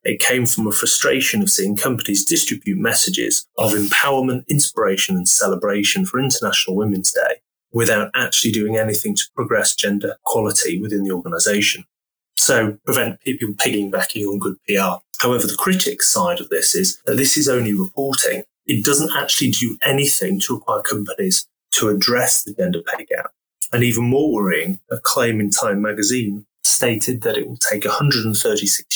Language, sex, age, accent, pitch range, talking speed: English, male, 30-49, British, 105-140 Hz, 165 wpm